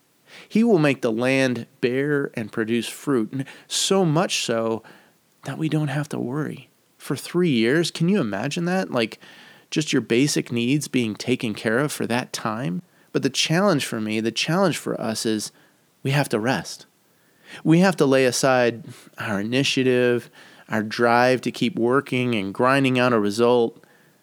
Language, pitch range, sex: English, 115-155 Hz, male